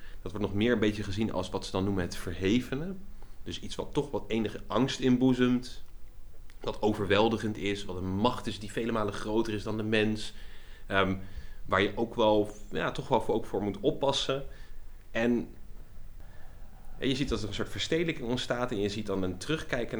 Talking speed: 195 wpm